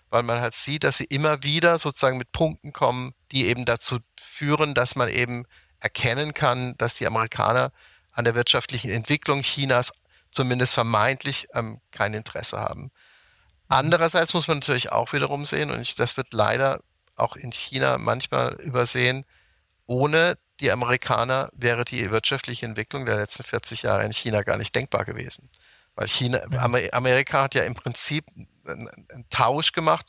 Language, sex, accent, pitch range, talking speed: German, male, German, 115-140 Hz, 160 wpm